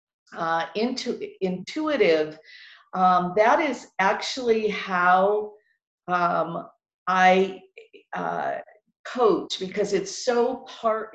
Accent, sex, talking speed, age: American, female, 85 wpm, 50-69